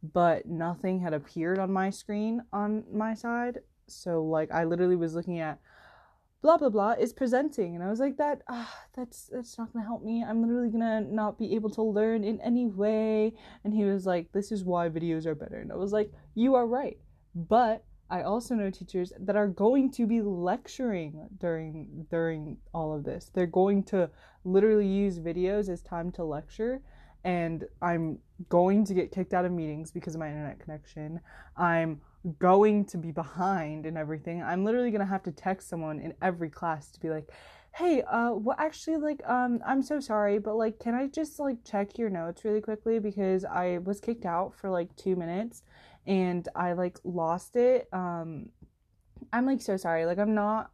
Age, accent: 20-39, American